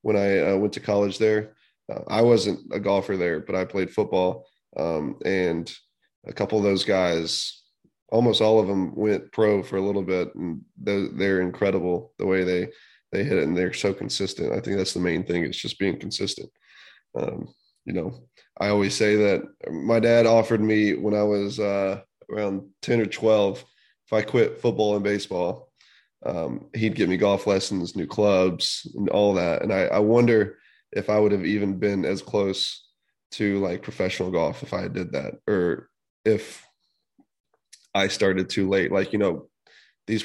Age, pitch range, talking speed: 20-39, 95-110 Hz, 185 wpm